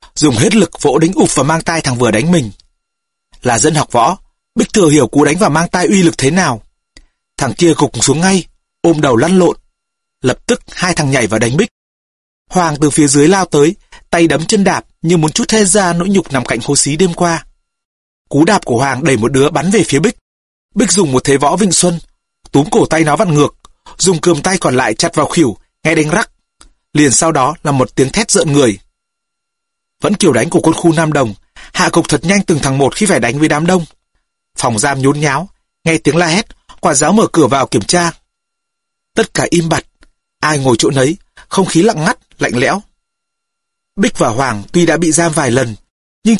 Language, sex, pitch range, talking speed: Vietnamese, male, 140-185 Hz, 225 wpm